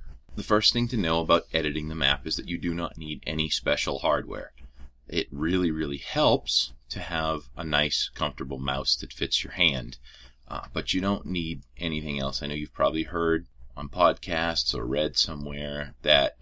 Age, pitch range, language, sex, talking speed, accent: 30-49, 65-80 Hz, English, male, 185 wpm, American